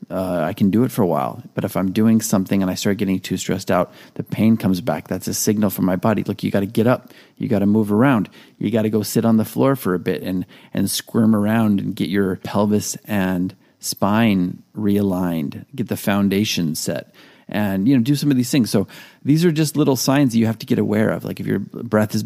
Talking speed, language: 245 wpm, English